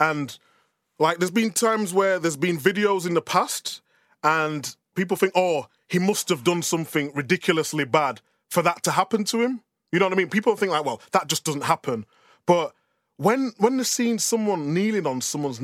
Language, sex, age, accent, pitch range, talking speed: English, male, 20-39, British, 145-190 Hz, 195 wpm